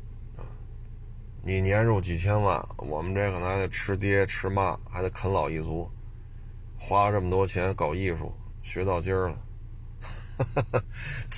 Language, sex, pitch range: Chinese, male, 100-115 Hz